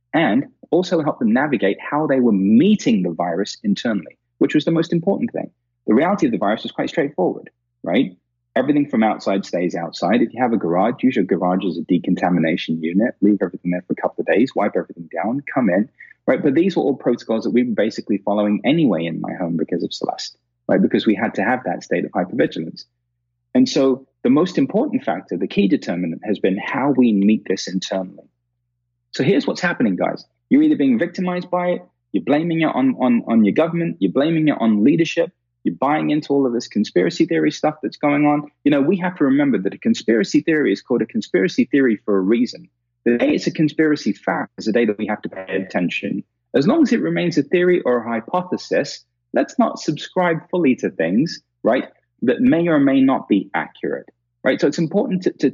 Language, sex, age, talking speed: English, male, 30-49, 215 wpm